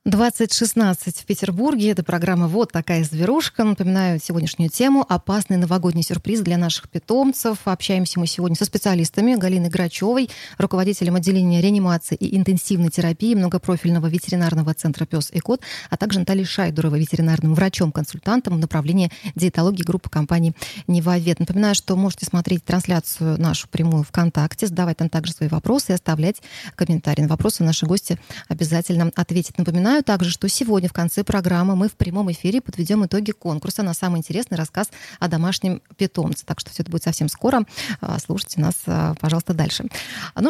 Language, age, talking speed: Russian, 20-39, 155 wpm